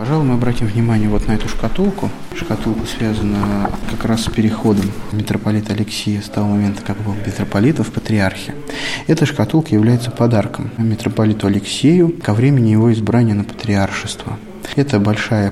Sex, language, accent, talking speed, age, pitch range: male, Russian, native, 145 wpm, 20-39, 105-120 Hz